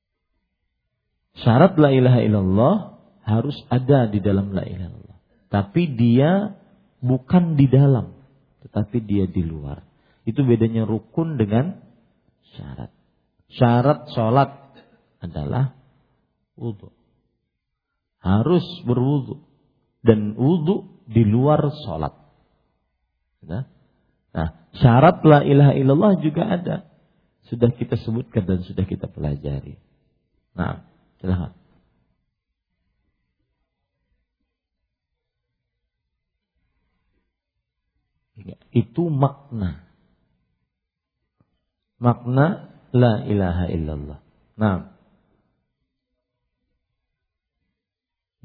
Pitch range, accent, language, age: 95-140 Hz, Indonesian, English, 50-69